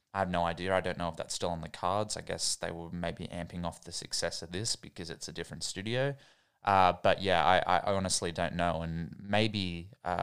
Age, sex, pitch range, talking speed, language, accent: 20-39, male, 85-95 Hz, 235 wpm, English, Australian